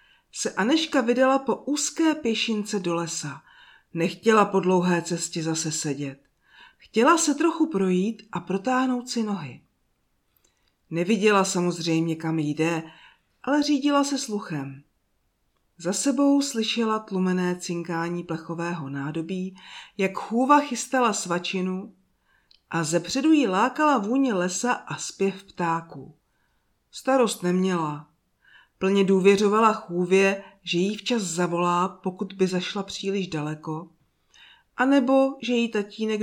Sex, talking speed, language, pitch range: female, 115 wpm, Czech, 165-225 Hz